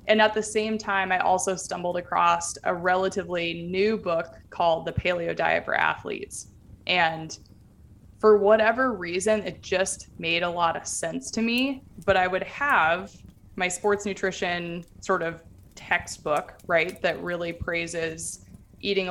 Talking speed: 150 wpm